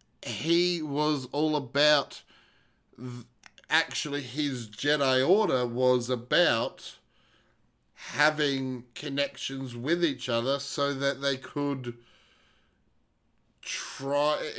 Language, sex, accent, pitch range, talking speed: English, male, Australian, 115-145 Hz, 80 wpm